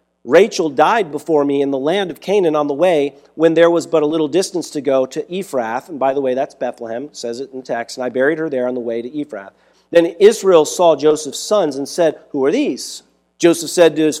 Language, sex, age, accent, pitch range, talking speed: English, male, 40-59, American, 140-170 Hz, 240 wpm